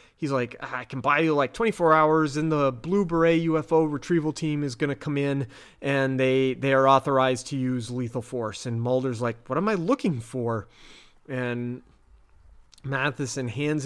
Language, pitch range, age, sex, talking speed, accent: English, 125-155 Hz, 30-49, male, 180 wpm, American